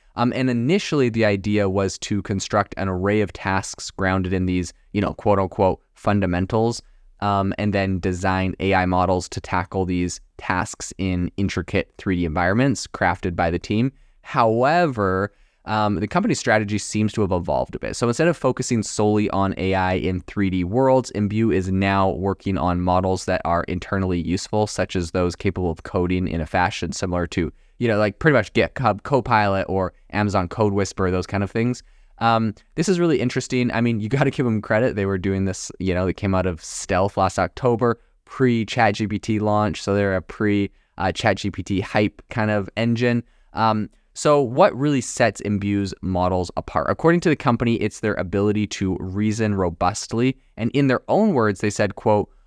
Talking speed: 180 wpm